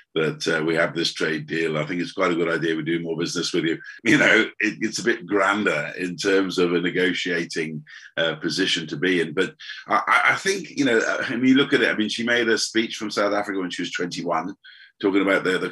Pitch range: 90-115 Hz